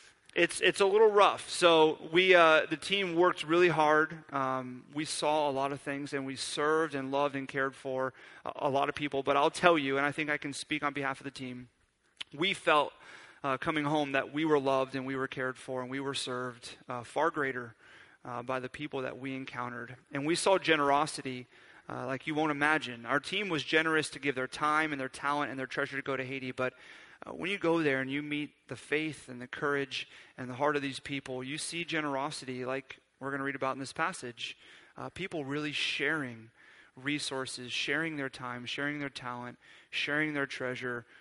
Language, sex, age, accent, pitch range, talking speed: English, male, 30-49, American, 130-160 Hz, 215 wpm